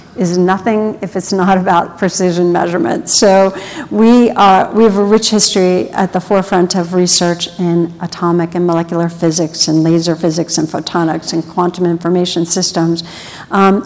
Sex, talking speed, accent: female, 155 wpm, American